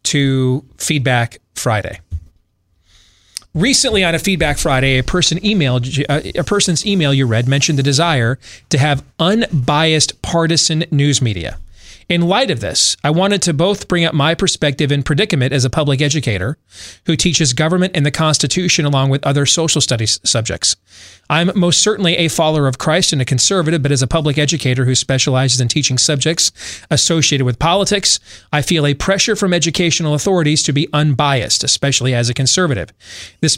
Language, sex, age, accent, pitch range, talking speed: English, male, 30-49, American, 130-170 Hz, 165 wpm